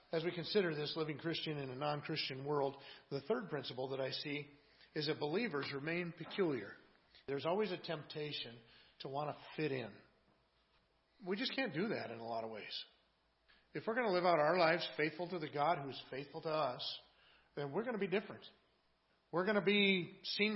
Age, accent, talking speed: 50-69, American, 200 wpm